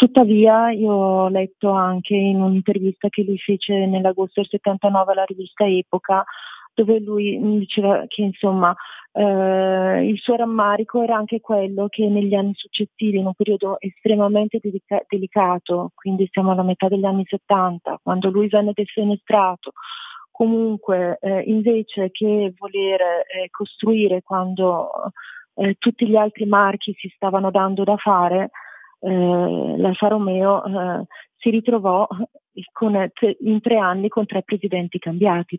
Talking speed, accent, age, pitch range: 140 wpm, native, 30-49, 190-215 Hz